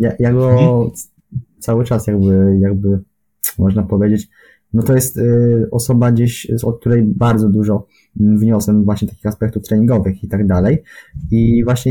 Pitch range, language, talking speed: 105-120 Hz, Polish, 140 wpm